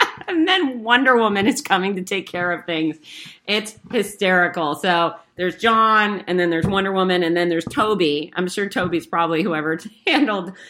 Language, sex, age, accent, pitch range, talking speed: English, female, 40-59, American, 150-185 Hz, 175 wpm